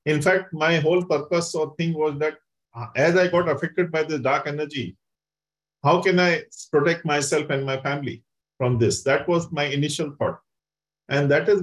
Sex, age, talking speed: male, 50-69, 180 wpm